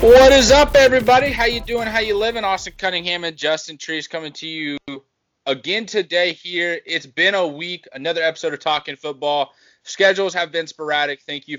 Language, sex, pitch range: English, male, 130-165 Hz